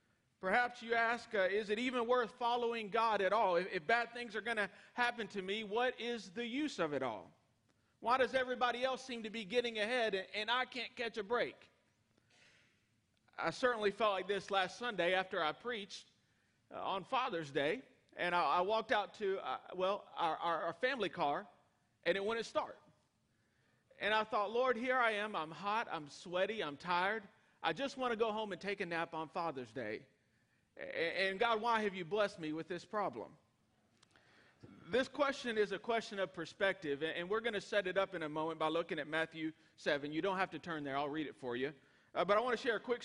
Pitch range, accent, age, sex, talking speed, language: 185-240 Hz, American, 40-59, male, 215 wpm, English